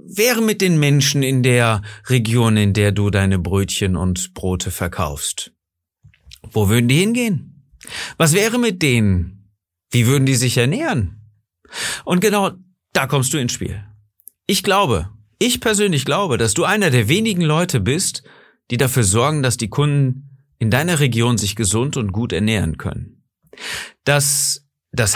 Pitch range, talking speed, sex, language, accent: 105-150 Hz, 155 wpm, male, German, German